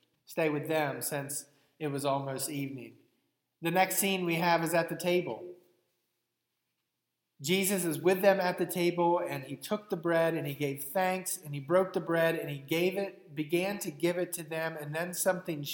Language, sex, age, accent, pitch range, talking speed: English, male, 30-49, American, 135-165 Hz, 195 wpm